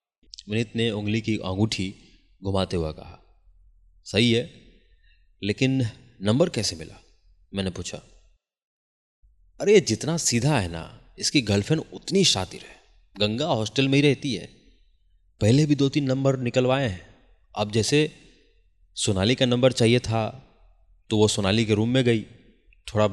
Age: 30-49